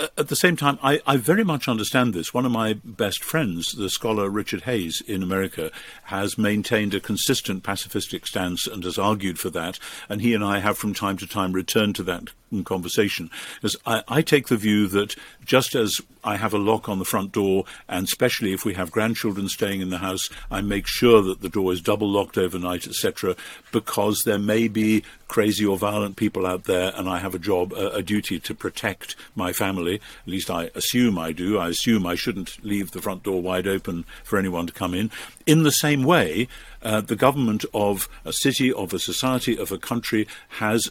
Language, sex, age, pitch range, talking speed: English, male, 50-69, 95-120 Hz, 210 wpm